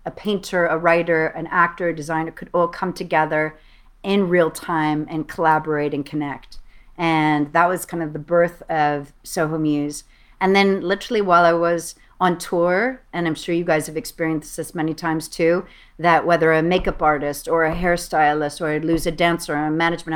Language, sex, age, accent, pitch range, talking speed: English, female, 50-69, American, 160-180 Hz, 185 wpm